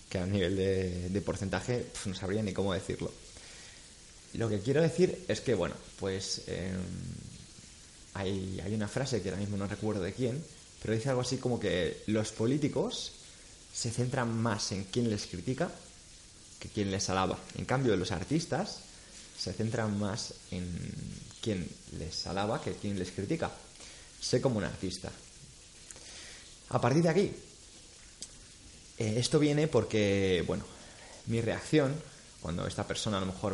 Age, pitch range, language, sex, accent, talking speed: 20-39, 95-130 Hz, Spanish, male, Spanish, 150 wpm